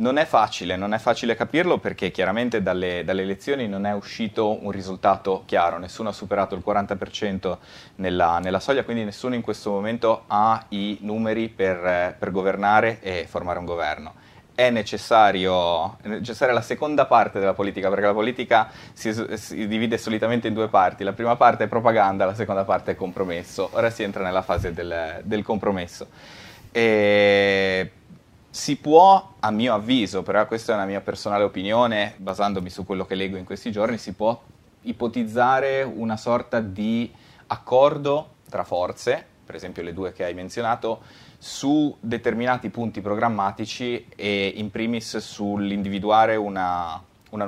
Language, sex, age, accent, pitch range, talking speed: Italian, male, 20-39, native, 95-115 Hz, 160 wpm